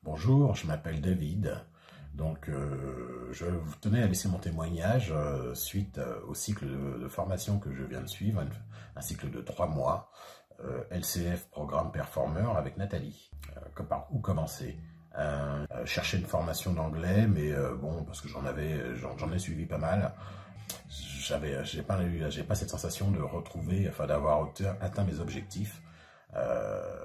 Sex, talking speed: male, 165 wpm